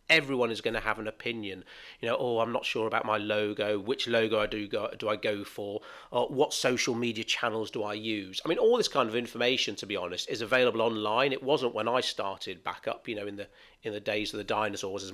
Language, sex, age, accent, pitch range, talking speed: English, male, 40-59, British, 110-160 Hz, 255 wpm